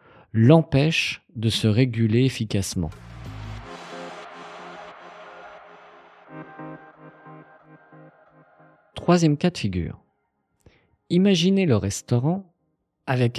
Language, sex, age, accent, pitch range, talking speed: French, male, 50-69, French, 105-155 Hz, 60 wpm